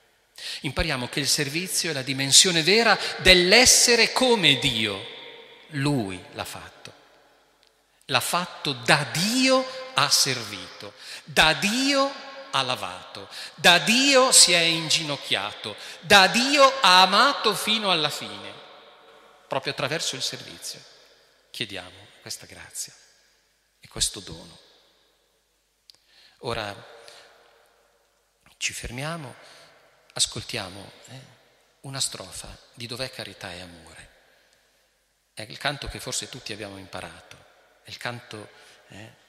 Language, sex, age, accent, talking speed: Italian, male, 40-59, native, 105 wpm